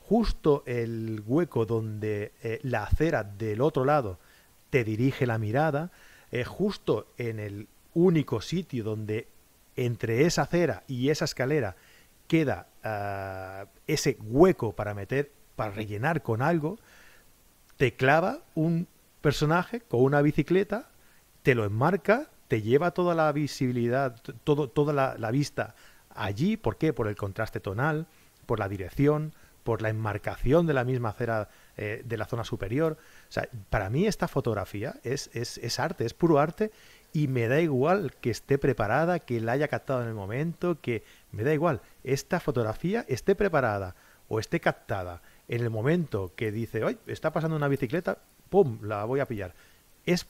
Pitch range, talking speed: 110-155 Hz, 155 wpm